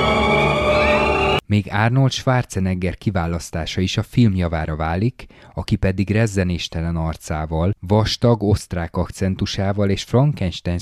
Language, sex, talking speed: Hungarian, male, 95 wpm